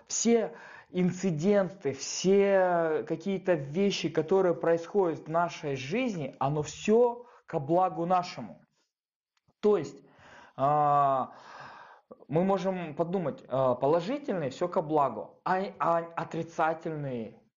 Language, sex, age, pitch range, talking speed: Russian, male, 20-39, 155-200 Hz, 90 wpm